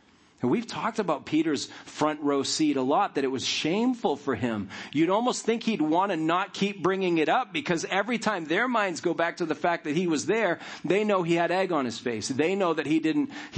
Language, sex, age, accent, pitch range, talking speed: English, male, 40-59, American, 120-170 Hz, 240 wpm